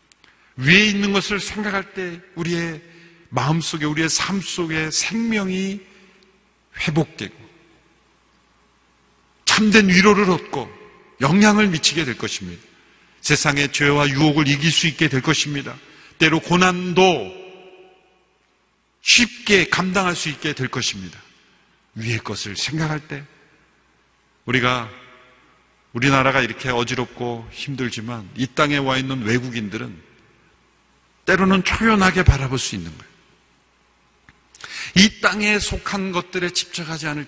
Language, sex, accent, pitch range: Korean, male, native, 130-185 Hz